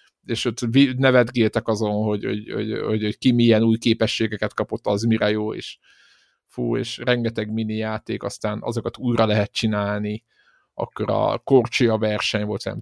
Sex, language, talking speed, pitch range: male, Hungarian, 150 wpm, 110-130 Hz